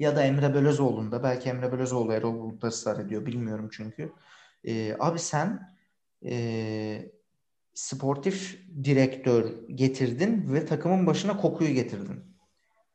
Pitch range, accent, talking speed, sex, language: 130-200 Hz, native, 120 wpm, male, Turkish